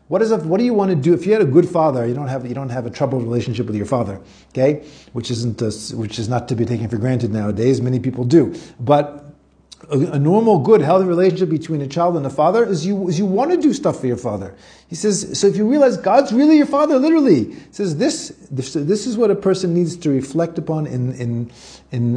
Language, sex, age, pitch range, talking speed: English, male, 40-59, 120-170 Hz, 250 wpm